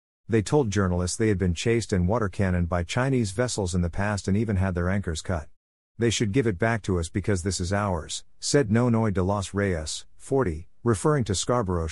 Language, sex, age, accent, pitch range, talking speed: English, male, 50-69, American, 90-120 Hz, 210 wpm